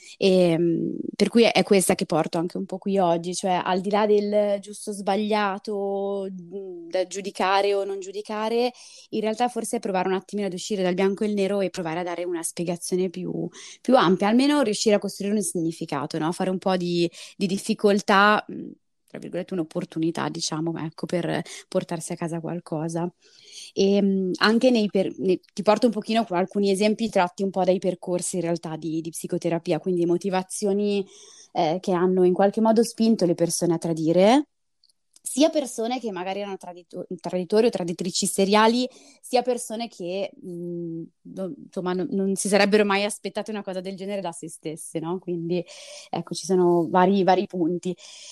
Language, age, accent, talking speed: Italian, 20-39, native, 170 wpm